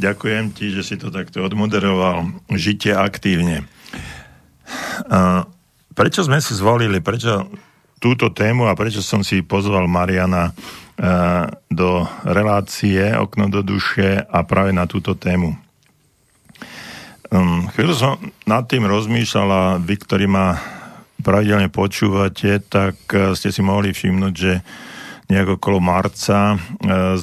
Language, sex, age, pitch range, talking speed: Slovak, male, 50-69, 95-100 Hz, 115 wpm